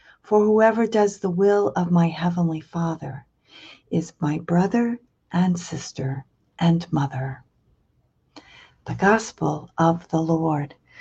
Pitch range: 160-190 Hz